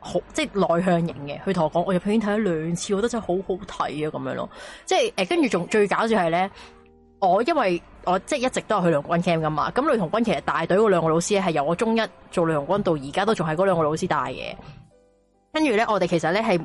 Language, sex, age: Chinese, female, 20-39